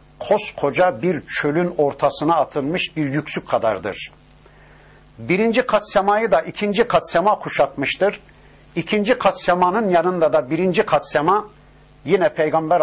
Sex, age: male, 60-79